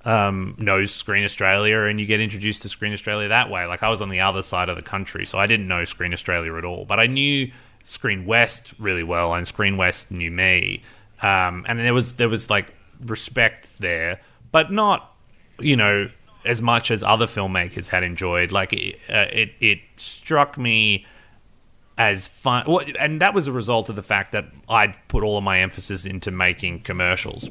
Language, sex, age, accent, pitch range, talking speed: English, male, 30-49, Australian, 95-115 Hz, 195 wpm